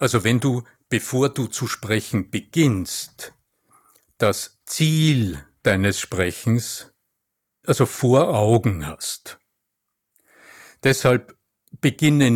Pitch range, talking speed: 105-130 Hz, 85 wpm